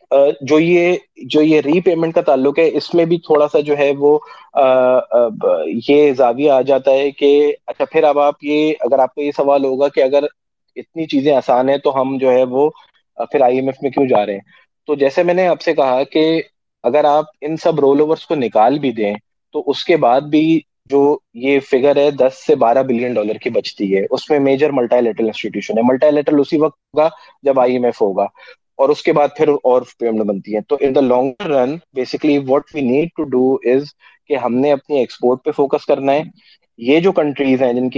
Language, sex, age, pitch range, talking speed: Urdu, male, 20-39, 125-150 Hz, 150 wpm